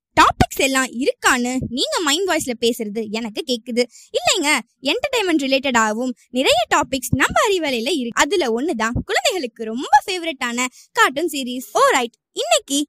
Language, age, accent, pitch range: Tamil, 20-39, native, 235-330 Hz